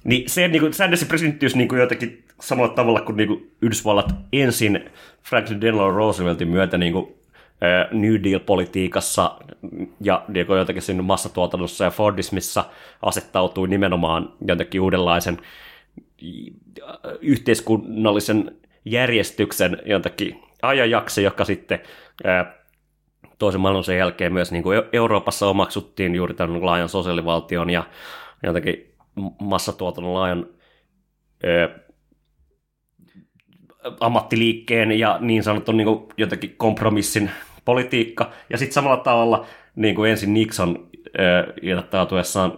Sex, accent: male, native